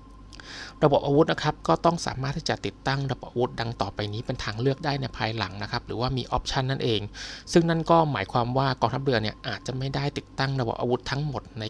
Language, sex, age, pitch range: Thai, male, 20-39, 110-135 Hz